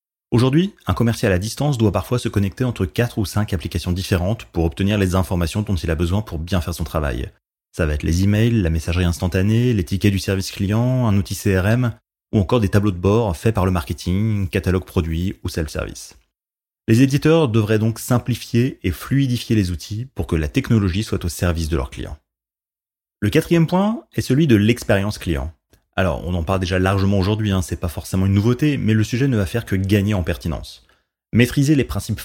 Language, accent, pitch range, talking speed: French, French, 90-120 Hz, 205 wpm